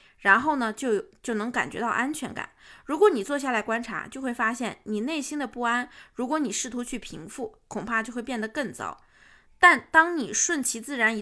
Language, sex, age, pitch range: Chinese, female, 20-39, 210-280 Hz